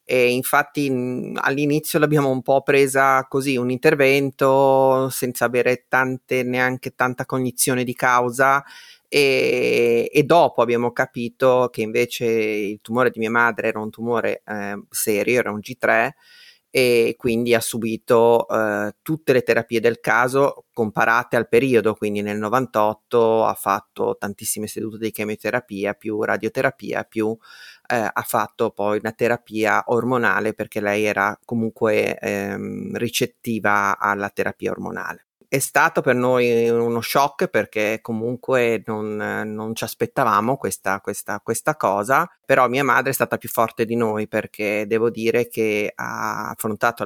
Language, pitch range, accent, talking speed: Italian, 110-130 Hz, native, 140 wpm